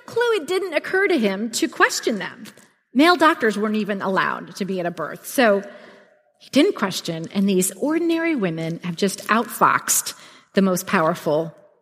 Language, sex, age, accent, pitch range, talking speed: English, female, 40-59, American, 190-250 Hz, 170 wpm